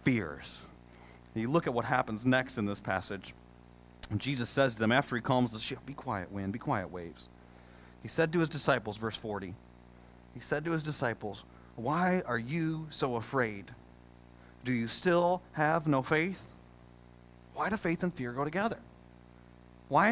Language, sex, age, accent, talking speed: English, male, 40-59, American, 165 wpm